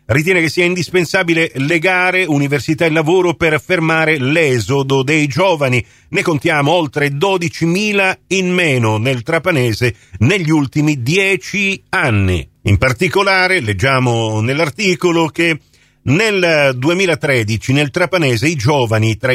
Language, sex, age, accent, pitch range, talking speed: Italian, male, 50-69, native, 140-195 Hz, 115 wpm